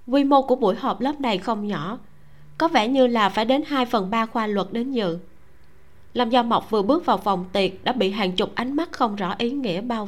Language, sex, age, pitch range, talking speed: Vietnamese, female, 20-39, 195-255 Hz, 245 wpm